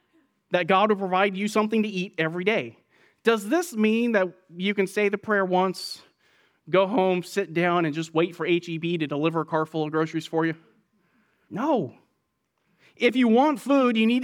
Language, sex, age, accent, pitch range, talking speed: English, male, 30-49, American, 160-215 Hz, 190 wpm